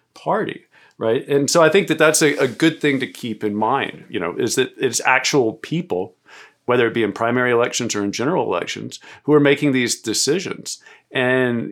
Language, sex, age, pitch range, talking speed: English, male, 50-69, 110-135 Hz, 200 wpm